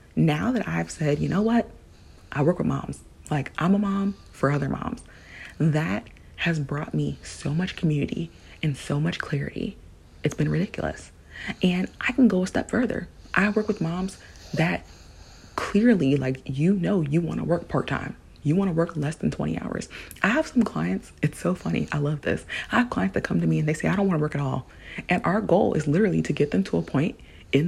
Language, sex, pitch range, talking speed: English, female, 140-205 Hz, 215 wpm